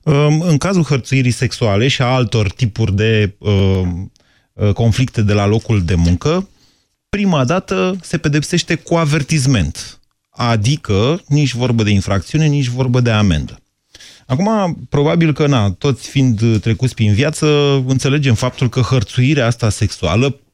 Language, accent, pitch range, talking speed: Romanian, native, 105-140 Hz, 130 wpm